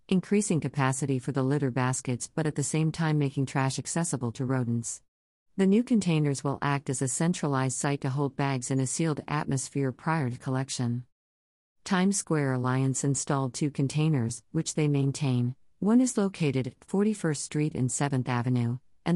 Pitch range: 130-155 Hz